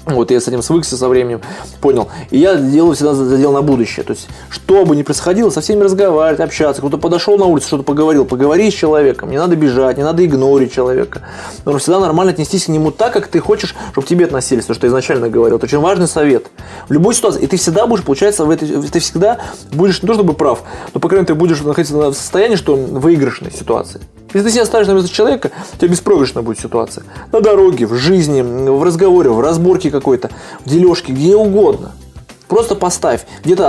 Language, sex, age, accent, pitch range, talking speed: Russian, male, 20-39, native, 130-180 Hz, 220 wpm